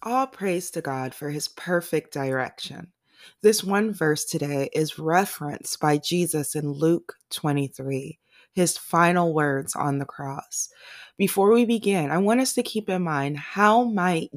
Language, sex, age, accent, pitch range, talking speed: English, female, 20-39, American, 135-175 Hz, 155 wpm